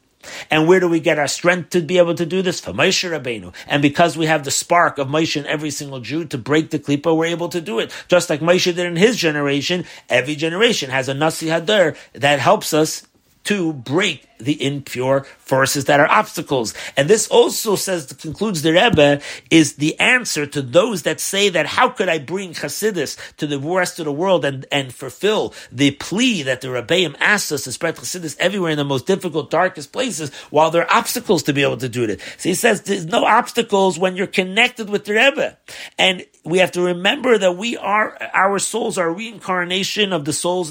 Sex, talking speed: male, 210 wpm